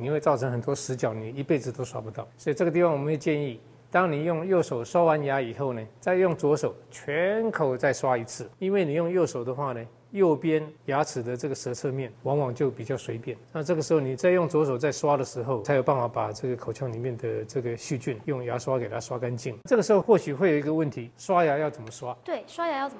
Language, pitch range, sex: Chinese, 125-155 Hz, male